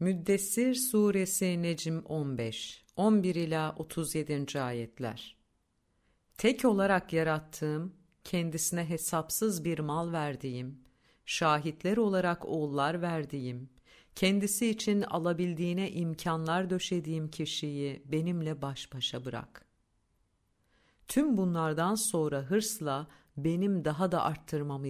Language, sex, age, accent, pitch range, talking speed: Turkish, female, 50-69, native, 120-175 Hz, 90 wpm